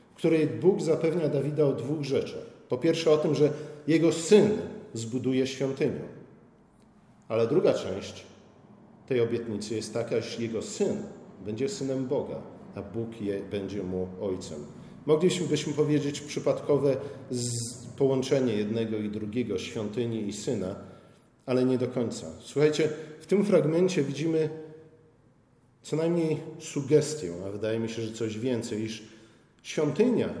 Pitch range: 120-155 Hz